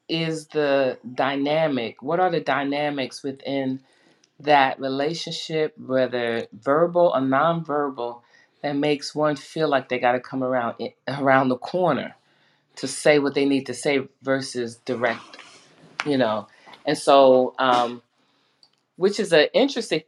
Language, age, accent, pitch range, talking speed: English, 30-49, American, 125-155 Hz, 135 wpm